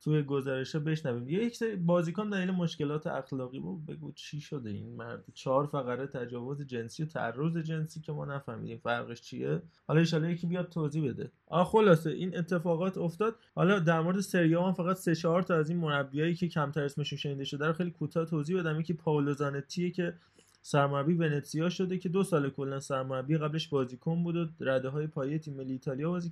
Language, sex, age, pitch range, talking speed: Persian, male, 20-39, 135-170 Hz, 180 wpm